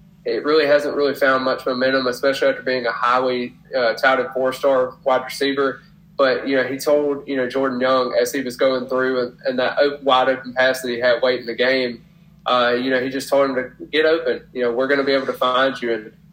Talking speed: 240 wpm